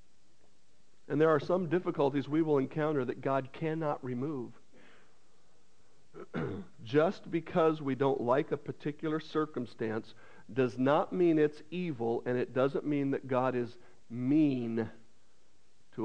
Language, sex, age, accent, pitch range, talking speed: English, male, 50-69, American, 130-185 Hz, 125 wpm